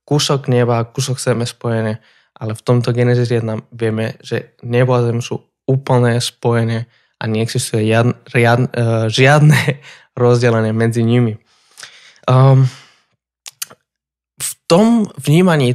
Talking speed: 105 wpm